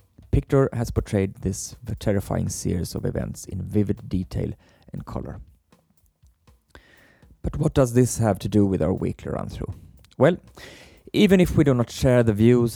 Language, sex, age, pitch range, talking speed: English, male, 30-49, 90-115 Hz, 155 wpm